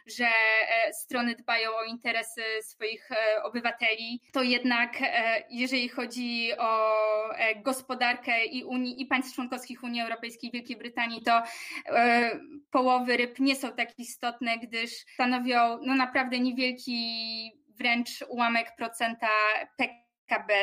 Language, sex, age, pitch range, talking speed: Polish, female, 20-39, 230-260 Hz, 110 wpm